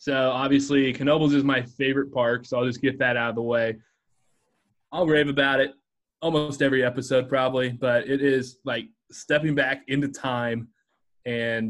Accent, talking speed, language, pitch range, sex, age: American, 170 wpm, English, 115-135 Hz, male, 20-39